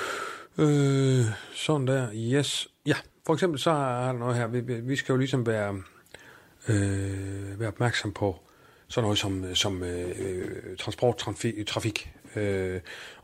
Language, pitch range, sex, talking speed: Danish, 110-155 Hz, male, 130 wpm